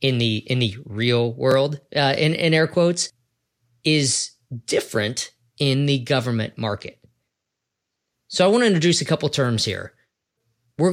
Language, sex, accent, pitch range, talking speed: English, male, American, 115-140 Hz, 150 wpm